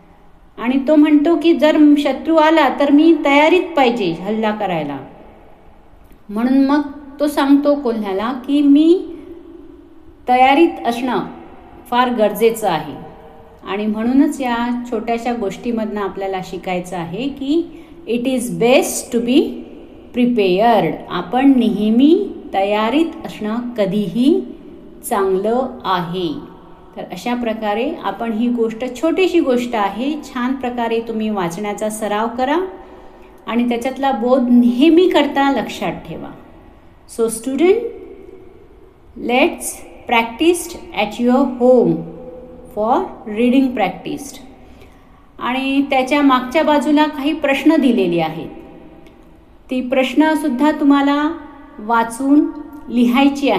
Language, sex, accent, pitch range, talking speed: Marathi, female, native, 220-300 Hz, 95 wpm